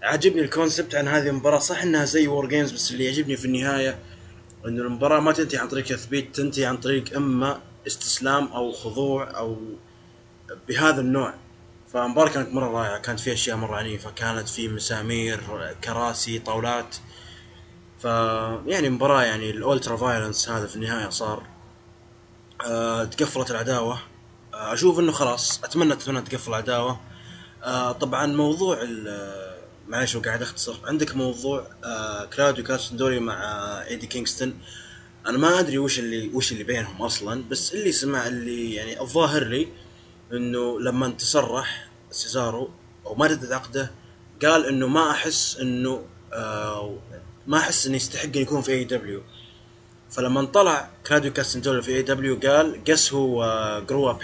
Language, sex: English, male